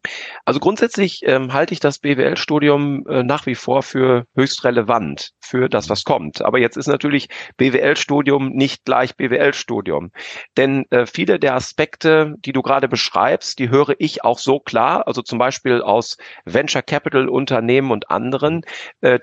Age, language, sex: 40-59, English, male